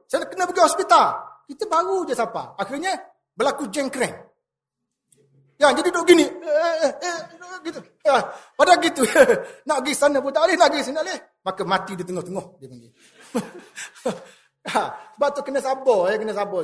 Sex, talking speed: male, 165 wpm